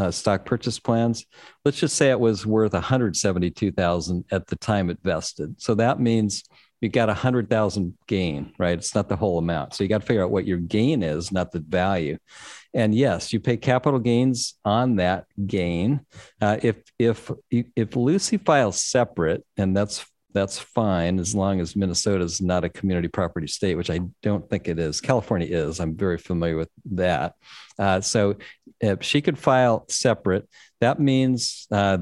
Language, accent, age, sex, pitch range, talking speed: English, American, 50-69, male, 95-115 Hz, 180 wpm